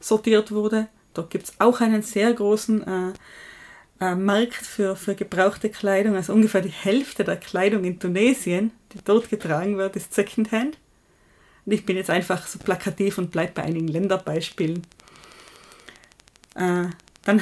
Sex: female